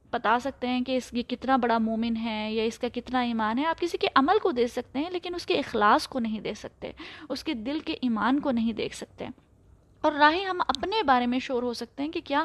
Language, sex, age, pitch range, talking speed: Urdu, female, 20-39, 235-310 Hz, 255 wpm